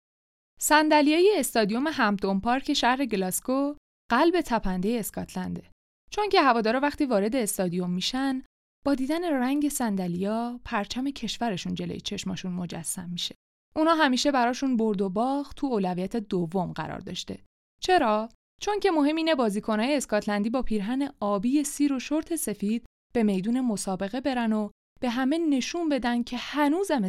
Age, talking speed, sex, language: 20-39, 135 wpm, female, Persian